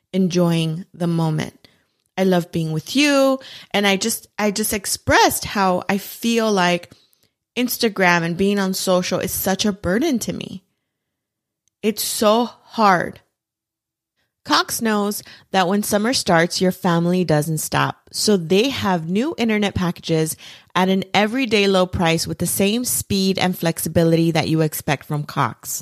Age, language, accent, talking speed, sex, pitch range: 30-49, English, American, 150 wpm, female, 170-210 Hz